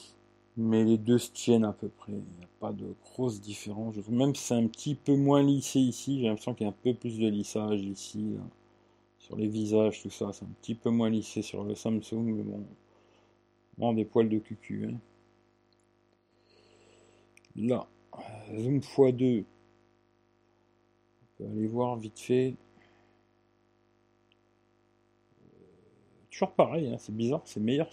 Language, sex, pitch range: French, male, 115-125 Hz